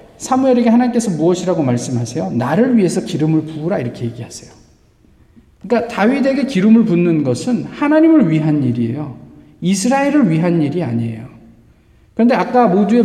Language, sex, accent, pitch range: Korean, male, native, 160-240 Hz